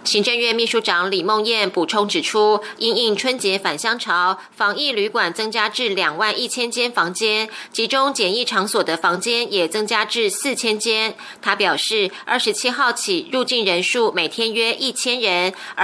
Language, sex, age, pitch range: Chinese, female, 20-39, 200-245 Hz